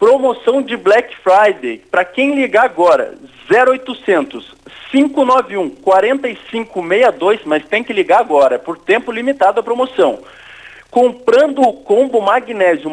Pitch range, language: 205-260 Hz, Portuguese